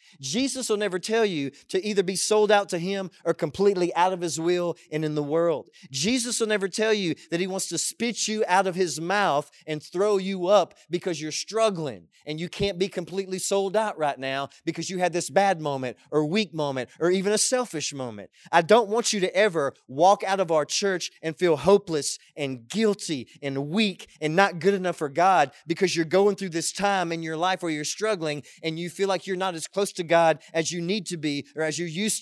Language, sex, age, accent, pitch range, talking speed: English, male, 30-49, American, 150-190 Hz, 225 wpm